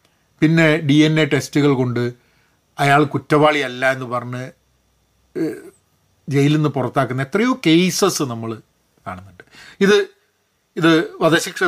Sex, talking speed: male, 100 wpm